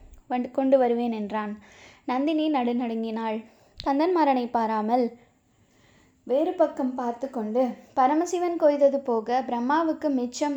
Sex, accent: female, native